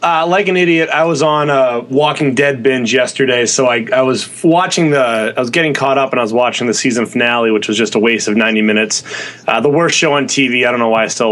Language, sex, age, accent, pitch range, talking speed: English, male, 20-39, American, 130-170 Hz, 265 wpm